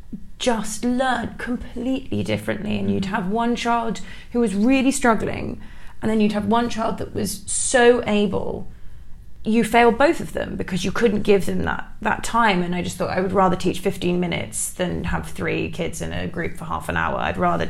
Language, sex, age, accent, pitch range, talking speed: English, female, 20-39, British, 180-225 Hz, 200 wpm